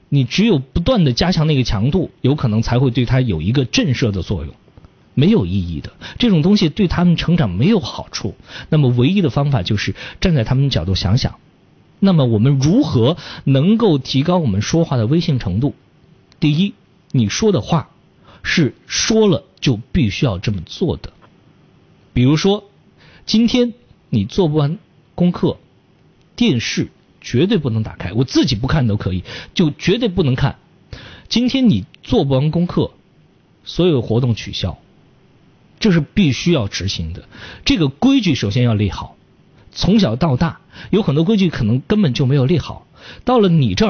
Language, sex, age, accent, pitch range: Chinese, male, 50-69, native, 120-180 Hz